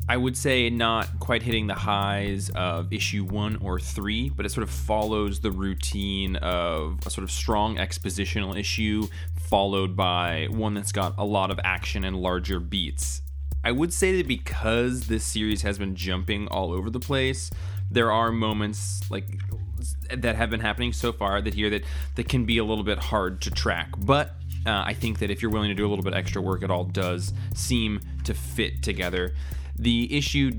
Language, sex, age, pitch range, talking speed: English, male, 20-39, 85-110 Hz, 195 wpm